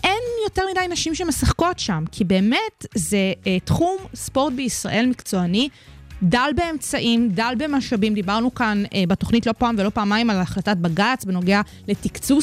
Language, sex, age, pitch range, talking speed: Hebrew, female, 20-39, 190-265 Hz, 140 wpm